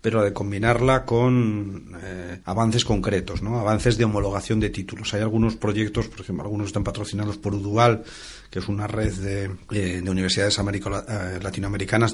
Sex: male